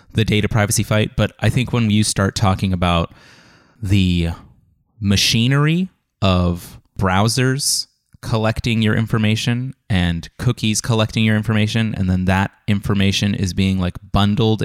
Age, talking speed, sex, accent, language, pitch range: 30-49, 130 wpm, male, American, English, 95-120 Hz